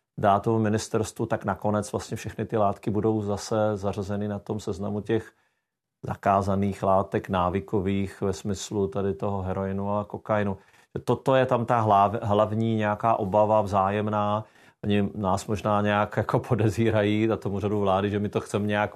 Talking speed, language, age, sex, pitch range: 150 wpm, Czech, 40-59, male, 100-115 Hz